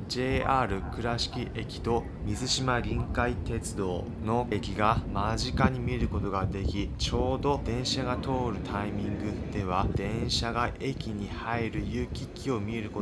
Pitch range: 105-130 Hz